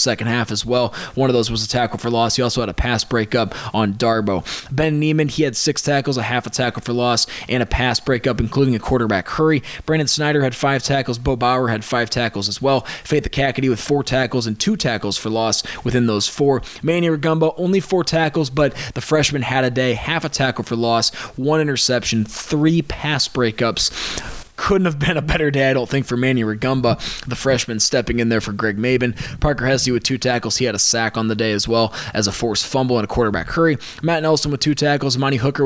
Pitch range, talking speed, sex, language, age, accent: 115-140 Hz, 230 wpm, male, English, 20-39, American